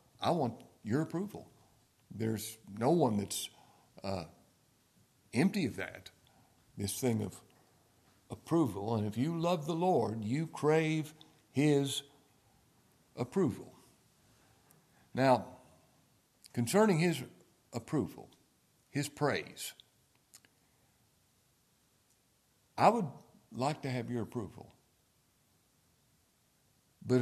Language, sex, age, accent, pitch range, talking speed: English, male, 60-79, American, 105-145 Hz, 90 wpm